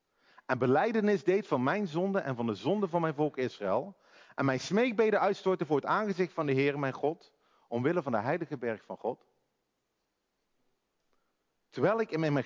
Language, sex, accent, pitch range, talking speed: Dutch, male, Dutch, 135-215 Hz, 185 wpm